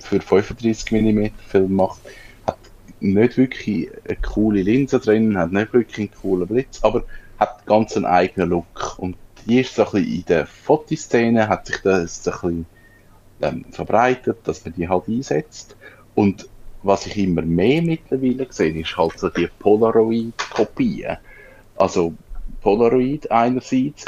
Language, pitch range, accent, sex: German, 90-120 Hz, Austrian, male